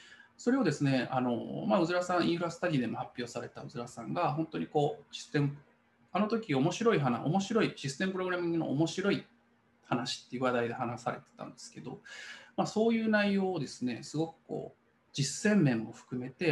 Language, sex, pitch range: Japanese, male, 125-180 Hz